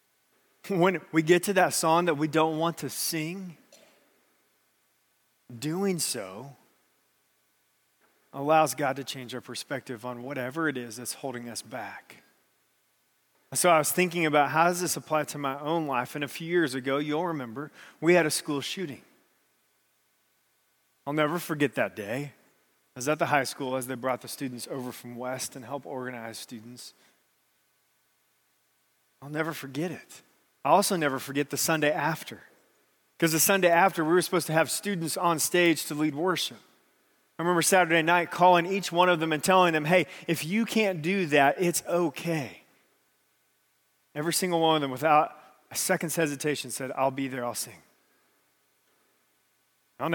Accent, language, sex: American, English, male